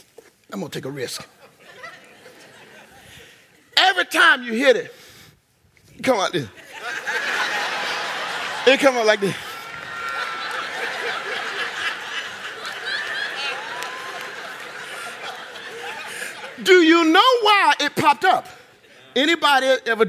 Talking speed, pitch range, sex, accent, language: 85 wpm, 270-435 Hz, male, American, English